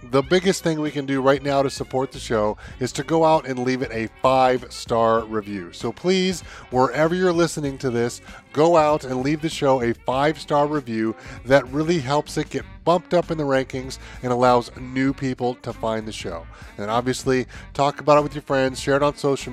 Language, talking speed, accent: English, 210 wpm, American